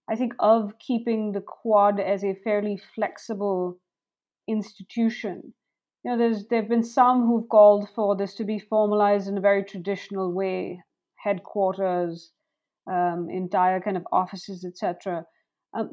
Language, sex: English, female